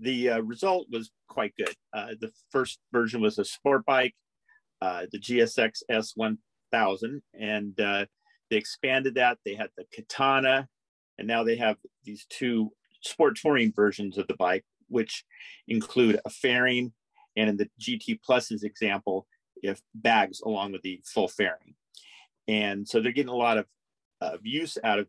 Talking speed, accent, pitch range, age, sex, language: 160 wpm, American, 105-135 Hz, 40-59, male, English